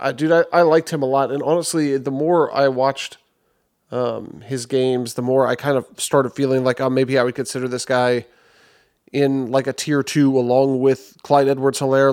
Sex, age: male, 30-49